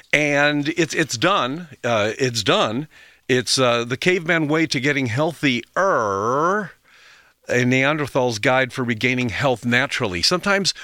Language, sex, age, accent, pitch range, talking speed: English, male, 50-69, American, 125-155 Hz, 140 wpm